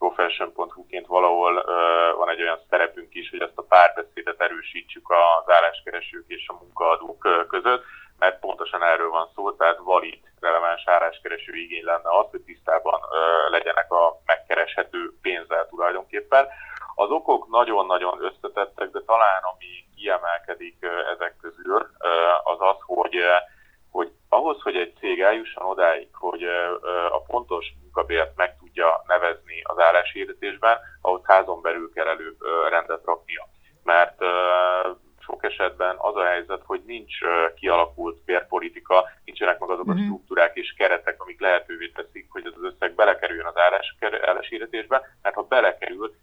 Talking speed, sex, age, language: 130 wpm, male, 30-49, Hungarian